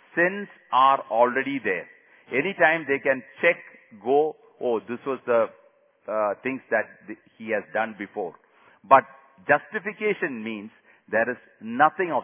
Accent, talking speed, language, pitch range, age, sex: Indian, 130 wpm, English, 120-170 Hz, 50-69, male